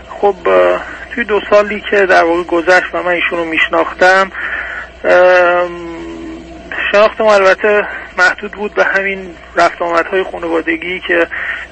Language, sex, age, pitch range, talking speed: Persian, male, 30-49, 170-205 Hz, 125 wpm